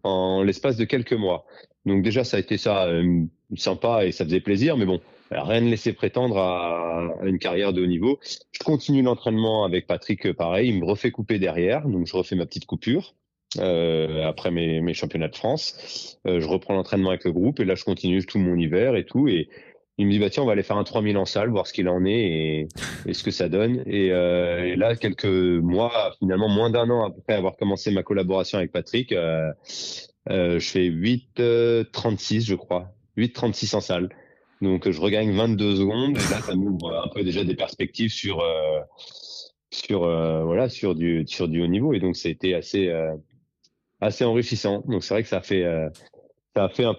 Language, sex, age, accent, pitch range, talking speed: French, male, 30-49, French, 90-115 Hz, 210 wpm